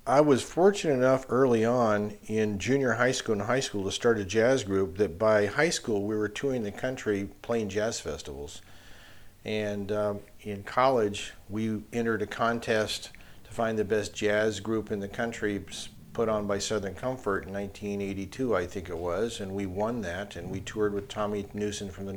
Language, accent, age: English, American, 40-59